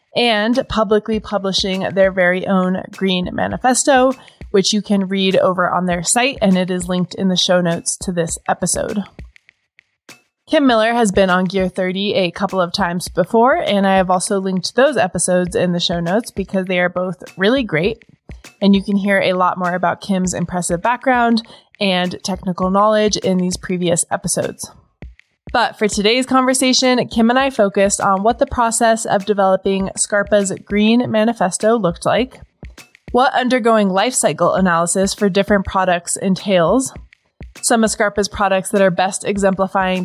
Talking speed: 165 wpm